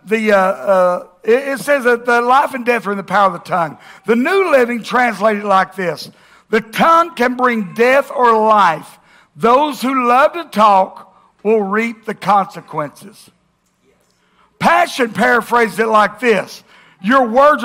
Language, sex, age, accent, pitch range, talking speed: English, male, 60-79, American, 200-245 Hz, 160 wpm